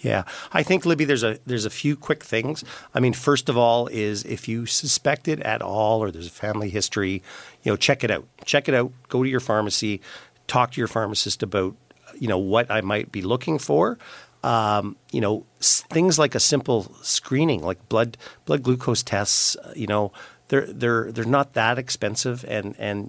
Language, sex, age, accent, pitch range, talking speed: English, male, 50-69, American, 105-125 Hz, 200 wpm